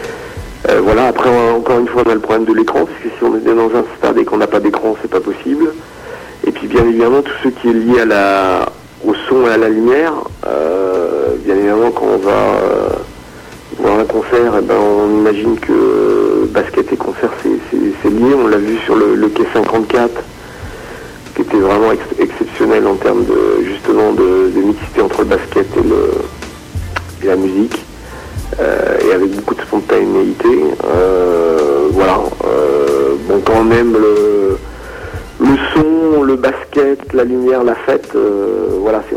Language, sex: French, male